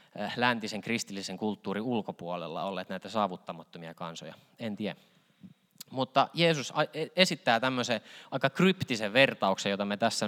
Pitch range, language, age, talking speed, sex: 100-145 Hz, Finnish, 20-39, 115 wpm, male